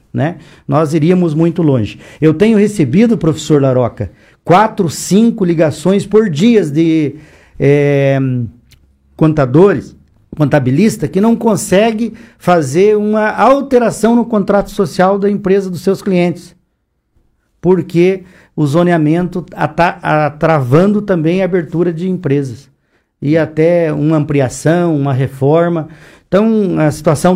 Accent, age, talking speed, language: Brazilian, 50-69, 110 wpm, Portuguese